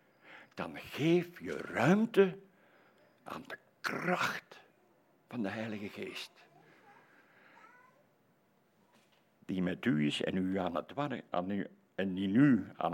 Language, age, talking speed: Dutch, 60-79, 115 wpm